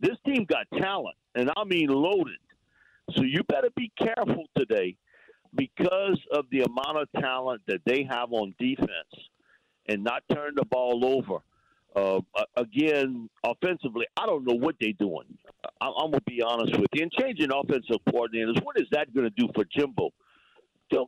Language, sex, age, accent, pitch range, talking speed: English, male, 50-69, American, 130-210 Hz, 170 wpm